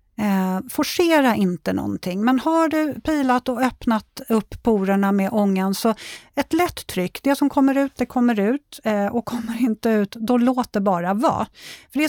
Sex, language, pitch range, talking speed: female, Swedish, 195-250 Hz, 180 wpm